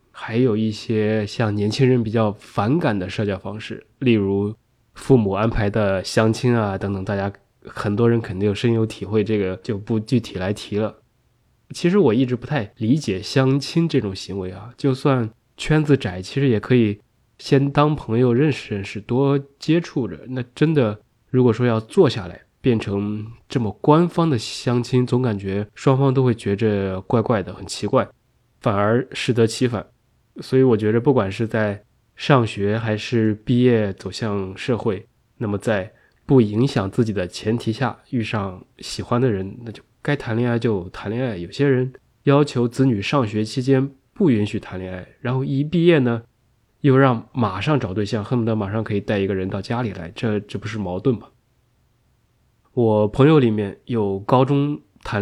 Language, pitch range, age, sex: Chinese, 105-130 Hz, 20-39, male